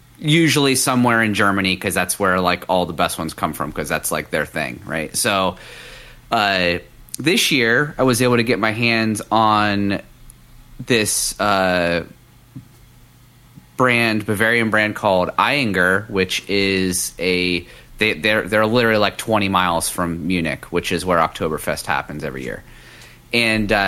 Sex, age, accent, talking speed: male, 30-49, American, 150 wpm